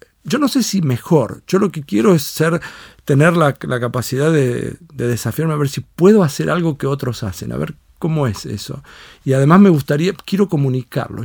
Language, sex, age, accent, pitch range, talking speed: Spanish, male, 50-69, Argentinian, 125-165 Hz, 205 wpm